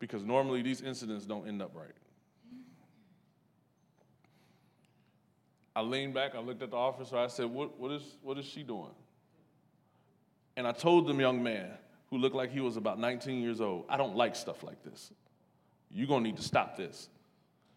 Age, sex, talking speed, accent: 20-39, male, 180 wpm, American